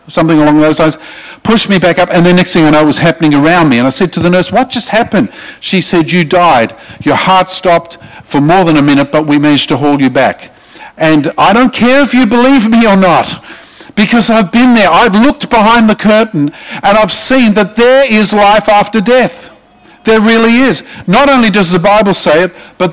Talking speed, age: 220 wpm, 50-69